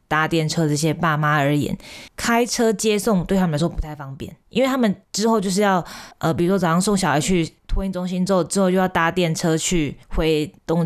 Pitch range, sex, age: 155-200 Hz, female, 20-39